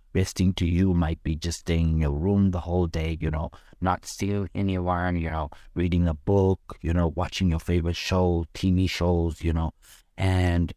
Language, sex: English, male